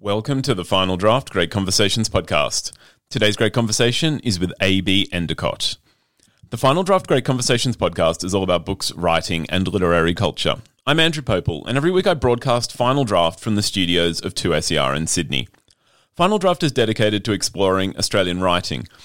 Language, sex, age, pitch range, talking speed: English, male, 30-49, 95-135 Hz, 170 wpm